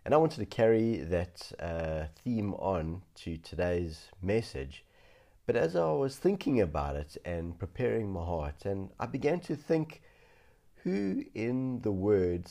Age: 50-69